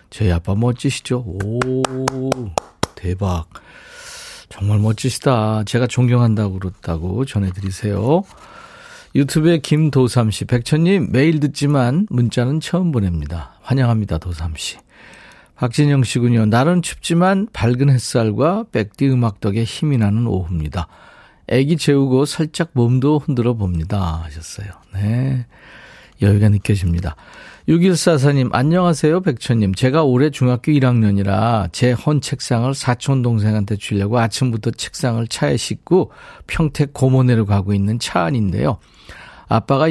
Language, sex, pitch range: Korean, male, 105-140 Hz